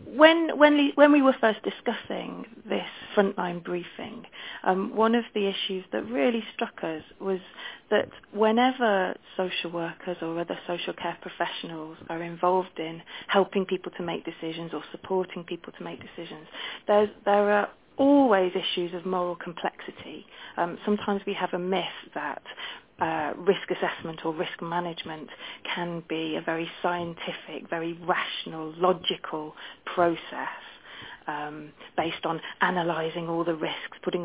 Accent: British